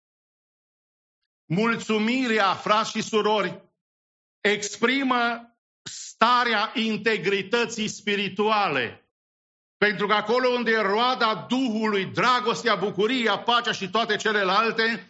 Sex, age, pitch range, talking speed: male, 50-69, 205-230 Hz, 85 wpm